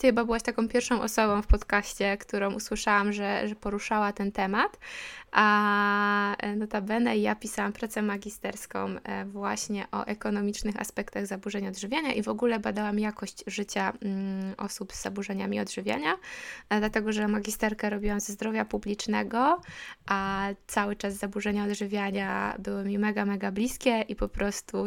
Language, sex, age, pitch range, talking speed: Polish, female, 20-39, 200-225 Hz, 135 wpm